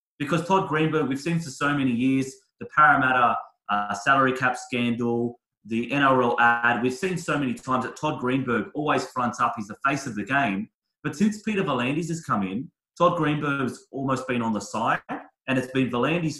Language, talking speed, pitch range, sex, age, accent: English, 200 wpm, 120-155 Hz, male, 30-49, Australian